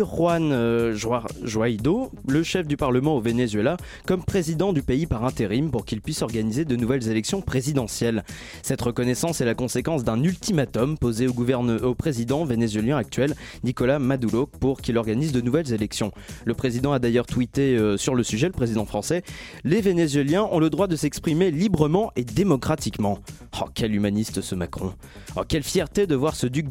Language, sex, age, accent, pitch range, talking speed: French, male, 20-39, French, 115-155 Hz, 180 wpm